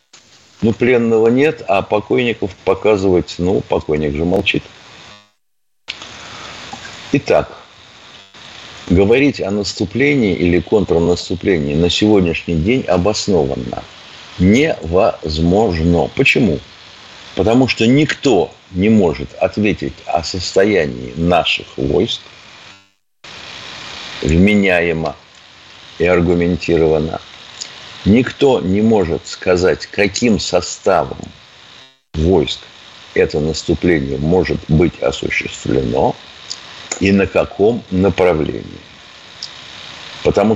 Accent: native